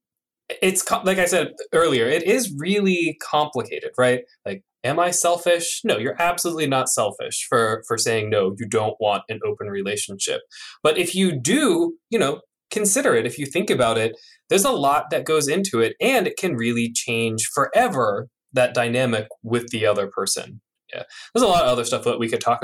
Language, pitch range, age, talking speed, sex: English, 115-185 Hz, 20-39, 190 wpm, male